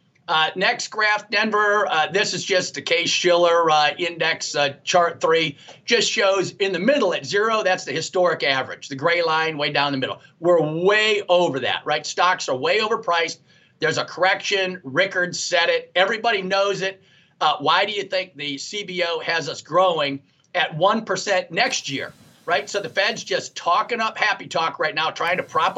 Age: 40-59